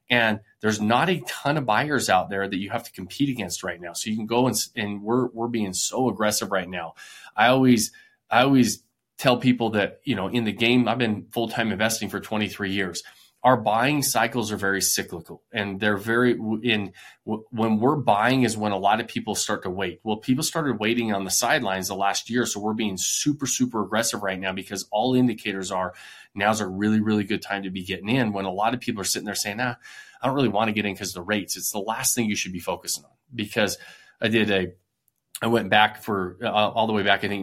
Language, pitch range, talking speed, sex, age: English, 100-120 Hz, 240 wpm, male, 20-39